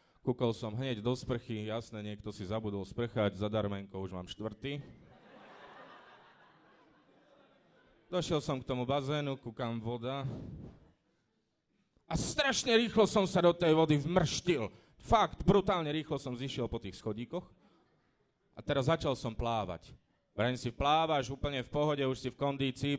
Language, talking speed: English, 140 wpm